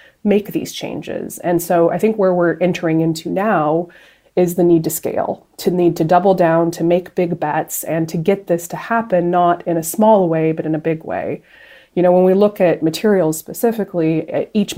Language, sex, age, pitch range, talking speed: English, female, 20-39, 165-185 Hz, 205 wpm